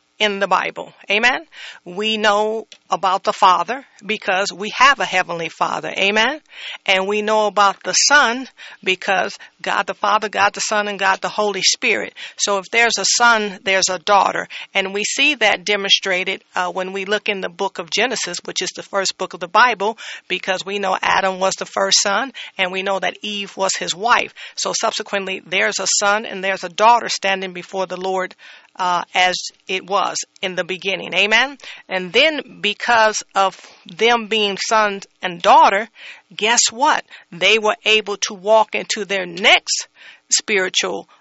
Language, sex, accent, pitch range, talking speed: English, female, American, 190-225 Hz, 175 wpm